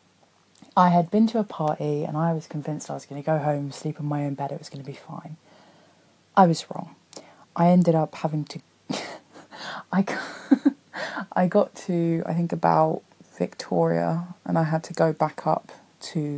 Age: 20-39